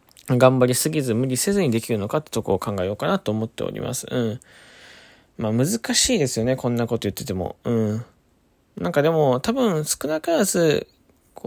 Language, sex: Japanese, male